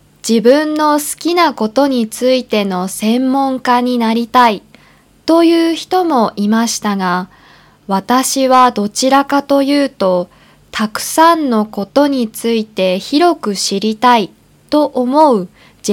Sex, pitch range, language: female, 195-270 Hz, Japanese